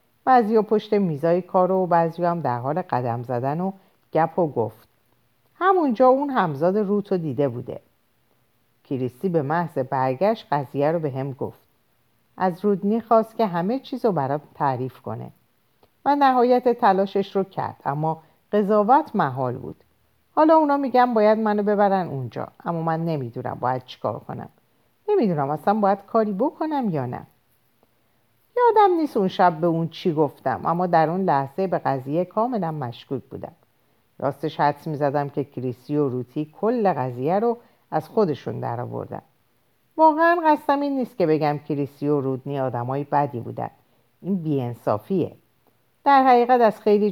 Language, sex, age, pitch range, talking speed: Persian, female, 50-69, 140-220 Hz, 150 wpm